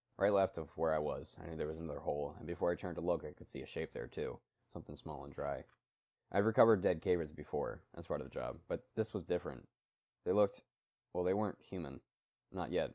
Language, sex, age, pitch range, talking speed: English, male, 20-39, 80-95 Hz, 240 wpm